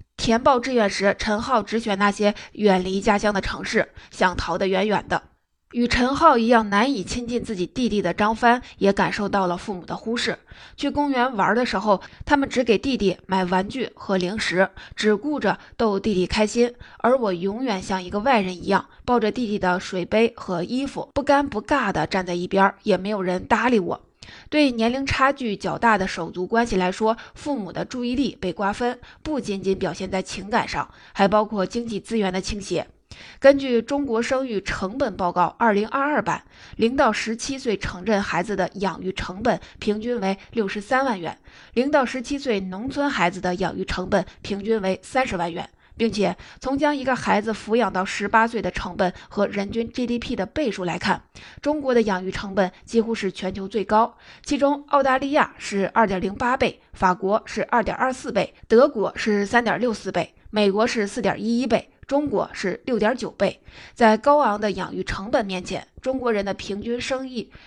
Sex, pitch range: female, 190-245 Hz